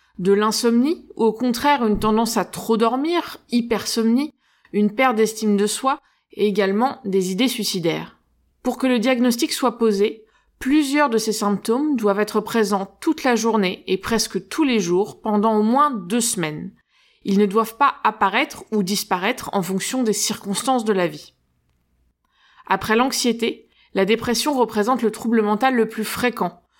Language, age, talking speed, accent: French, 20-39, 160 wpm, French